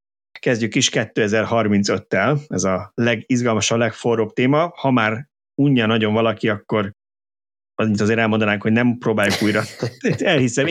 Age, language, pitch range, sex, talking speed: 30-49, Hungarian, 100-125 Hz, male, 135 wpm